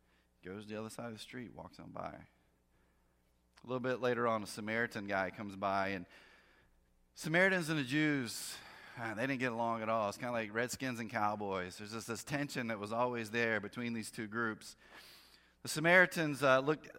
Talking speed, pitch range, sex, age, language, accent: 195 wpm, 110-145 Hz, male, 30-49, English, American